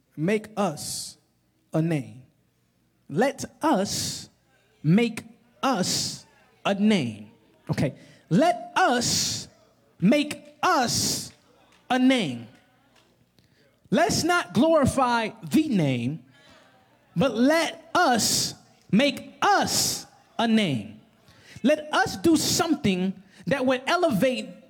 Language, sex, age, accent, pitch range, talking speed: English, male, 20-39, American, 195-295 Hz, 85 wpm